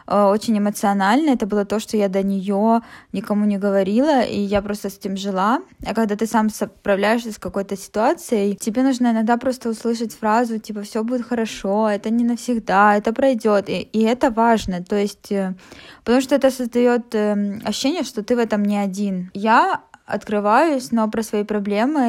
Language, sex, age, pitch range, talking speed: Russian, female, 20-39, 200-235 Hz, 175 wpm